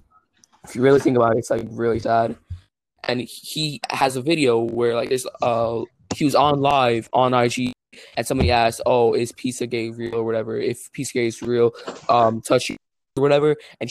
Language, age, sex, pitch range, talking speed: English, 20-39, male, 115-130 Hz, 190 wpm